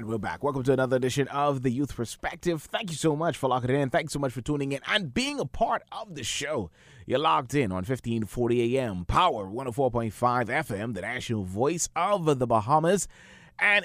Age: 30-49